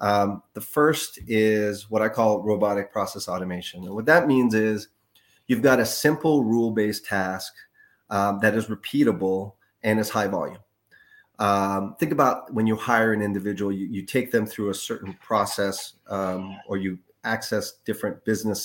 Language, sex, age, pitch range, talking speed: English, male, 30-49, 95-110 Hz, 165 wpm